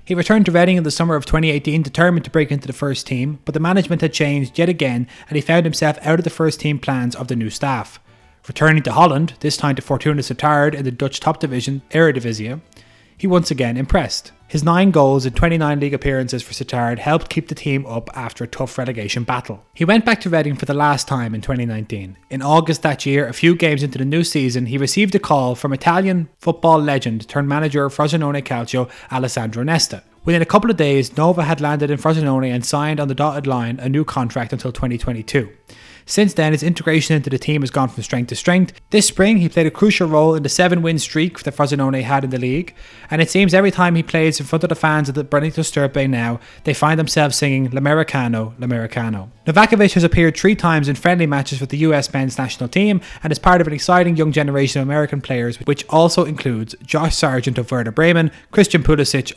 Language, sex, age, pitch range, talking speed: English, male, 20-39, 130-160 Hz, 220 wpm